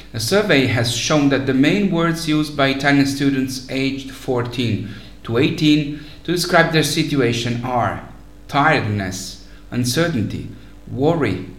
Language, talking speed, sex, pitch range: English, 125 wpm, male, 115-145 Hz